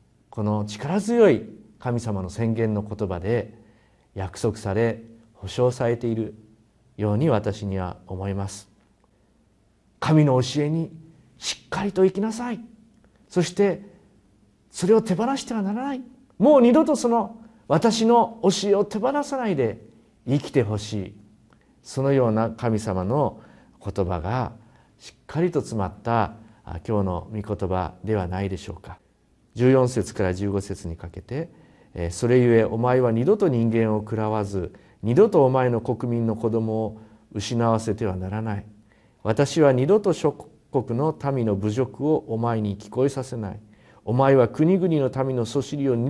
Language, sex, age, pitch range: Japanese, male, 50-69, 105-170 Hz